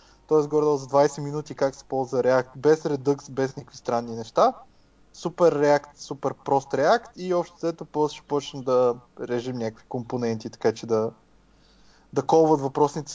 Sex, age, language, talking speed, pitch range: male, 20-39, Bulgarian, 160 wpm, 150-215 Hz